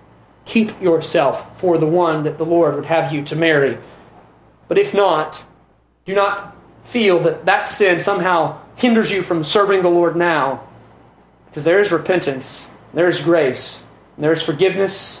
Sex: male